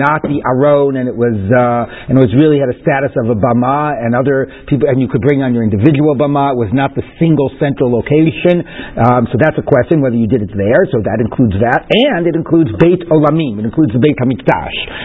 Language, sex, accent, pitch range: English, male, American, 130-165 Hz